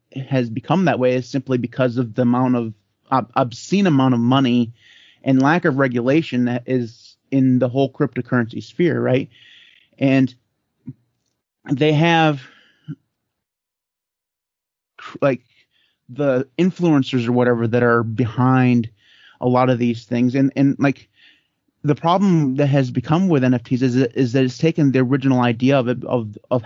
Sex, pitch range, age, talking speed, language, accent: male, 120-140 Hz, 30-49, 150 wpm, English, American